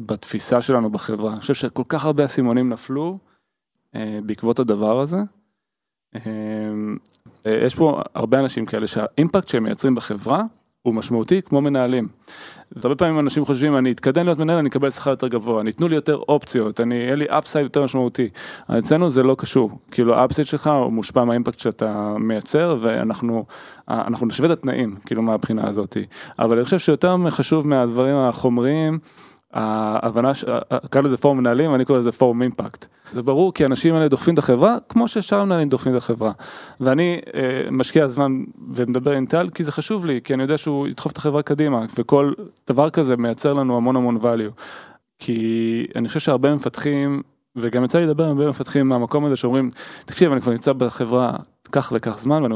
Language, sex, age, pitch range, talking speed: Hebrew, male, 20-39, 120-150 Hz, 160 wpm